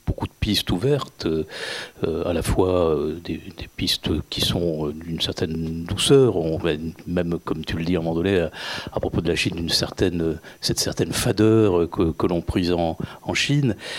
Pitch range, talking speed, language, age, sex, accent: 90-110 Hz, 170 wpm, French, 50-69, male, French